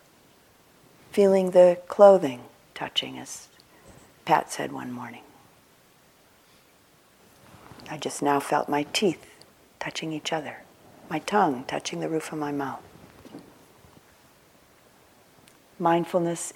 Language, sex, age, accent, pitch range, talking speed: English, female, 50-69, American, 145-185 Hz, 100 wpm